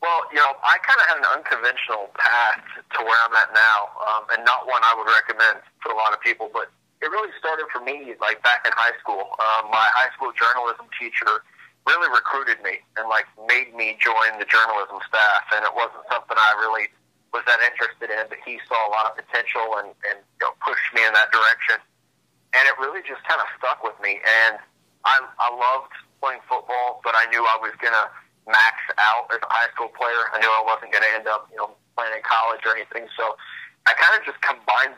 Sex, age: male, 40-59